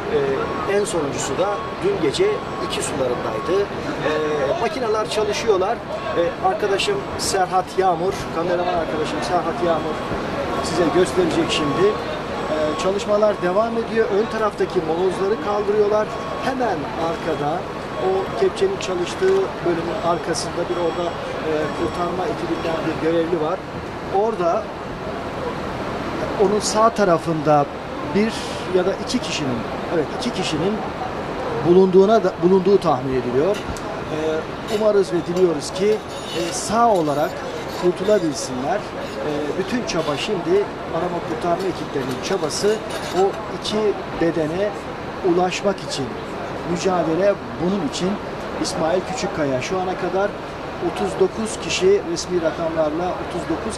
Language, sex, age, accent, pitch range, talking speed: Turkish, male, 40-59, native, 170-215 Hz, 110 wpm